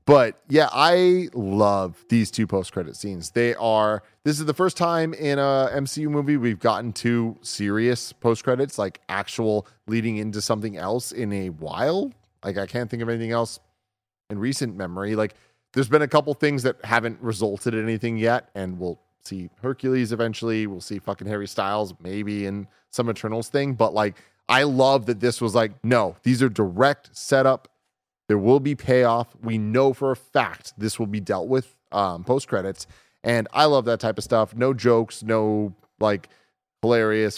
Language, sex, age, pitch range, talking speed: English, male, 30-49, 105-125 Hz, 180 wpm